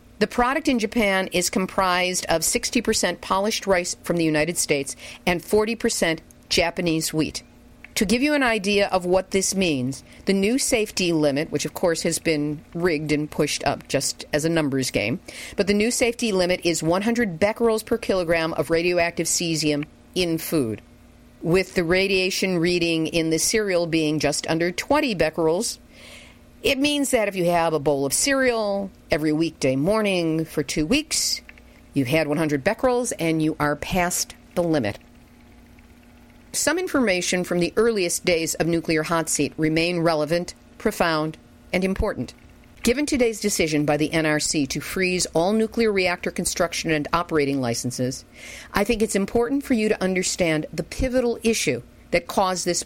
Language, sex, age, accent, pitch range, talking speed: English, female, 50-69, American, 155-205 Hz, 160 wpm